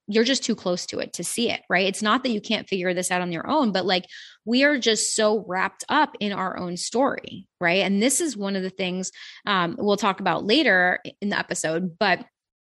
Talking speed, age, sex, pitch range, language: 235 wpm, 20-39, female, 190-245 Hz, English